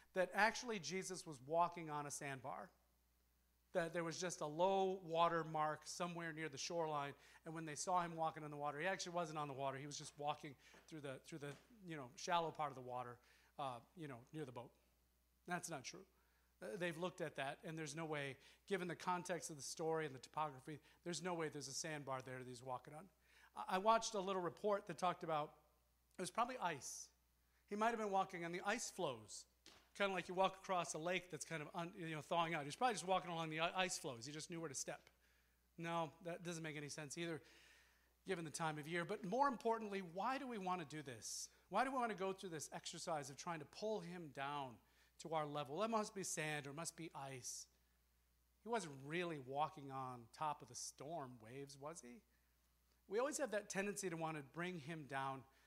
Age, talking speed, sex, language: 40-59, 230 wpm, male, English